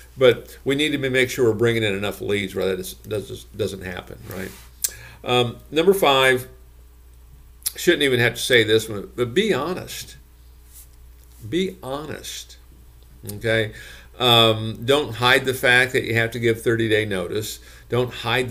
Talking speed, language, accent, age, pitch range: 150 wpm, English, American, 50-69, 95-125 Hz